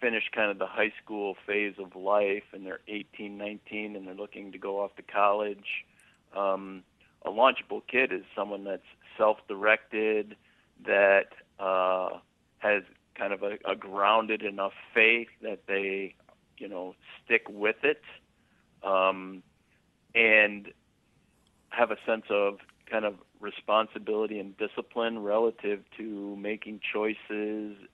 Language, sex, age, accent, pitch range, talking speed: English, male, 50-69, American, 100-110 Hz, 130 wpm